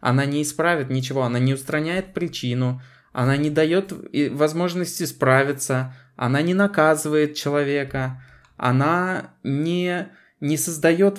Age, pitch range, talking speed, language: 20-39, 125-150 Hz, 115 wpm, Russian